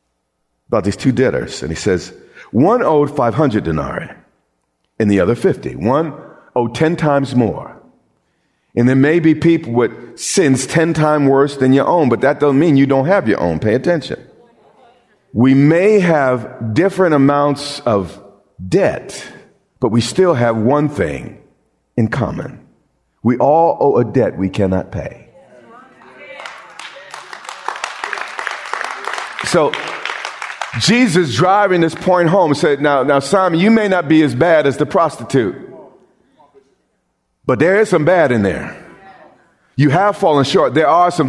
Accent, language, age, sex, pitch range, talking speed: American, English, 50-69, male, 120-170 Hz, 145 wpm